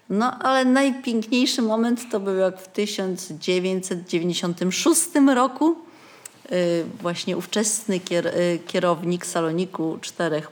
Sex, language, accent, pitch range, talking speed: female, Polish, native, 170-245 Hz, 85 wpm